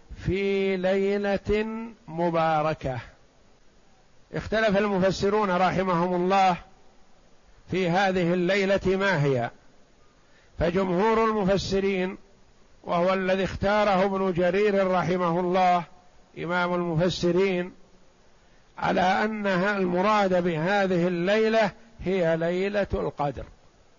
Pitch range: 175-200 Hz